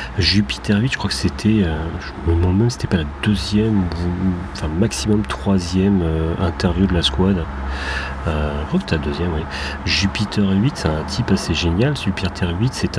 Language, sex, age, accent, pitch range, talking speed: French, male, 40-59, French, 85-105 Hz, 185 wpm